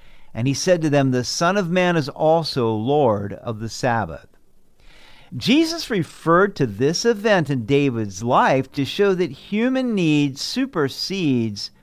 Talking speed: 145 wpm